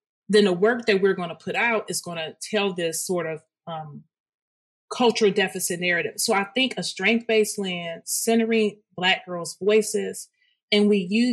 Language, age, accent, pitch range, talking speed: English, 30-49, American, 175-215 Hz, 175 wpm